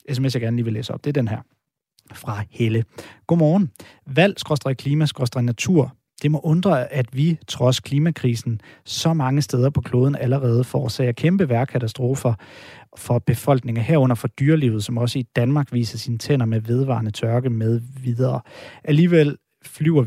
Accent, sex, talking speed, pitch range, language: native, male, 150 wpm, 120-145 Hz, Danish